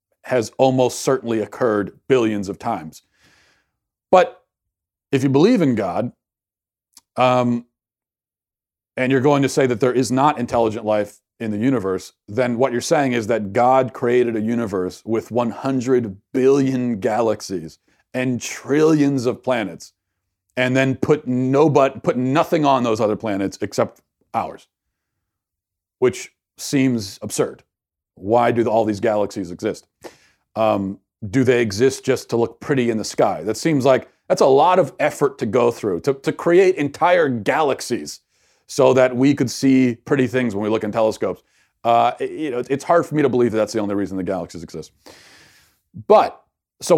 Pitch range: 105-135 Hz